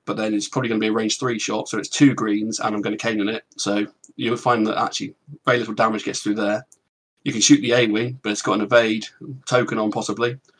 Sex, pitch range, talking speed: male, 105-125 Hz, 255 wpm